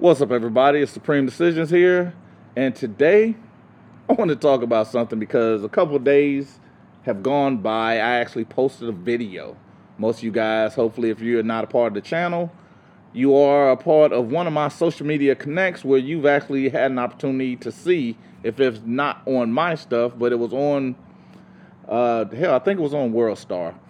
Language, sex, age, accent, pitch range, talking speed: English, male, 30-49, American, 120-160 Hz, 200 wpm